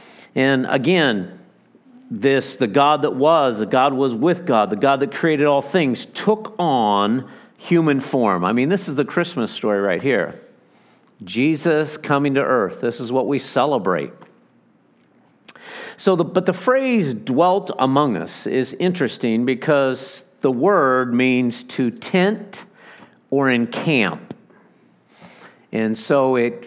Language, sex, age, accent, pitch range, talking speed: English, male, 50-69, American, 120-165 Hz, 135 wpm